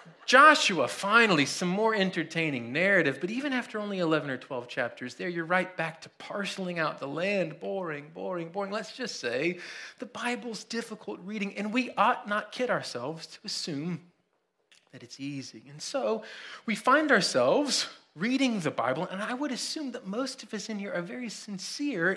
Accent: American